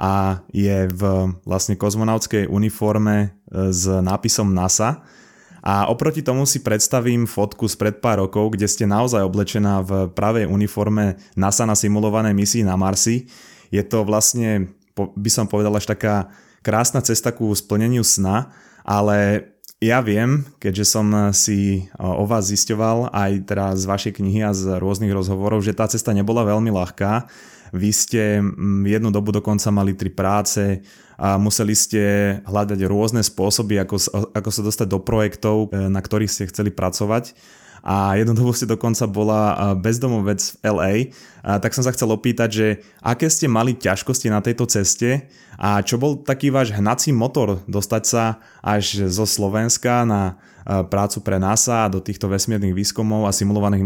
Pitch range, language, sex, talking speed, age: 100-115 Hz, Slovak, male, 155 wpm, 20-39